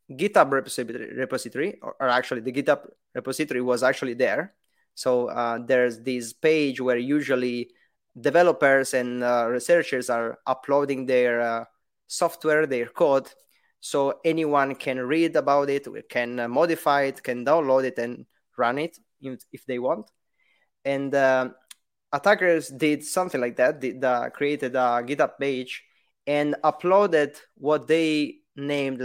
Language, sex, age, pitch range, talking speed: English, male, 20-39, 125-150 Hz, 130 wpm